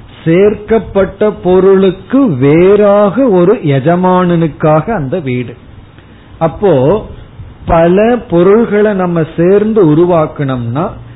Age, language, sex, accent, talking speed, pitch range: 40-59, Tamil, male, native, 70 wpm, 130-185 Hz